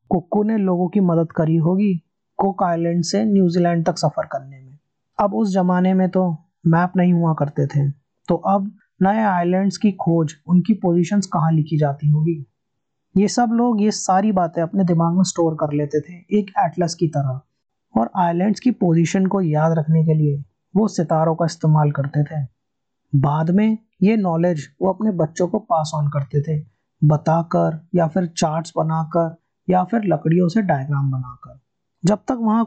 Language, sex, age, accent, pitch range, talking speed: Hindi, male, 30-49, native, 155-195 Hz, 165 wpm